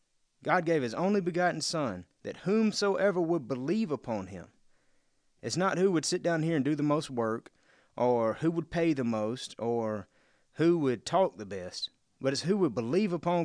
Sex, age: male, 30-49